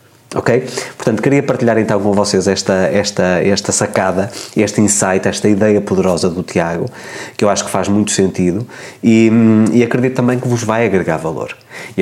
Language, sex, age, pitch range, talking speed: Portuguese, male, 20-39, 100-125 Hz, 170 wpm